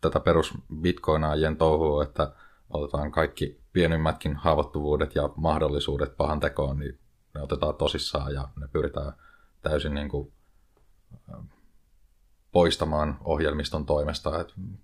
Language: Finnish